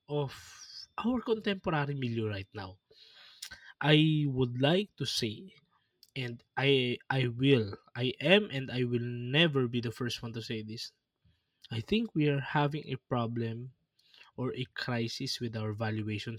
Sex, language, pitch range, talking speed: male, Filipino, 120-165 Hz, 150 wpm